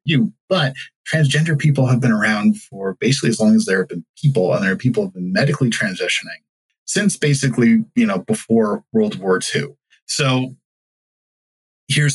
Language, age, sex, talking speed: English, 20-39, male, 170 wpm